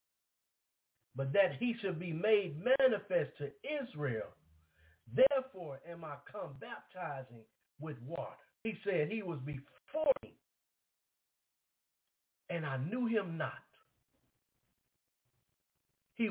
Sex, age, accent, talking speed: male, 50-69, American, 100 wpm